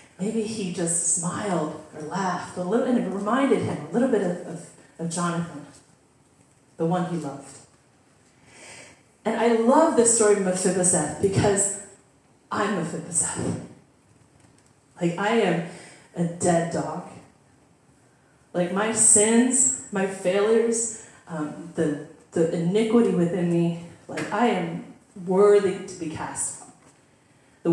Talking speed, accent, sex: 125 wpm, American, female